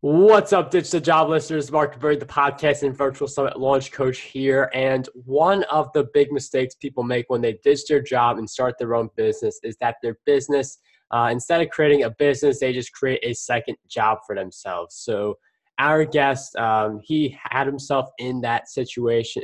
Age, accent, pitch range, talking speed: 20-39, American, 120-145 Hz, 190 wpm